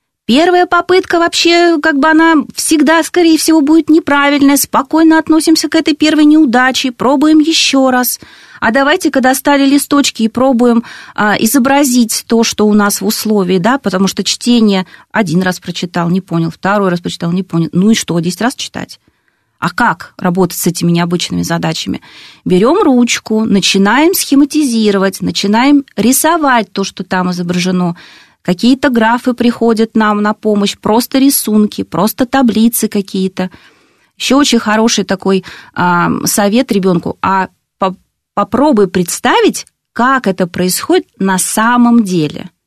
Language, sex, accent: Russian, female, native